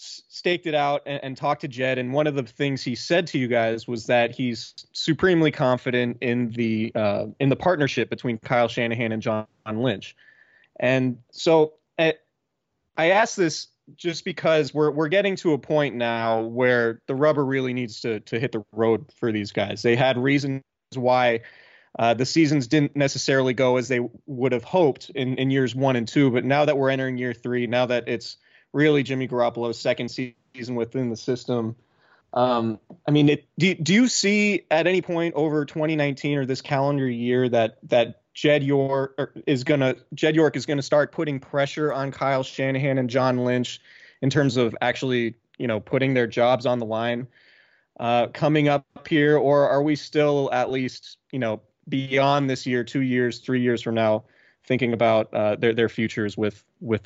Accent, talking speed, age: American, 190 wpm, 20-39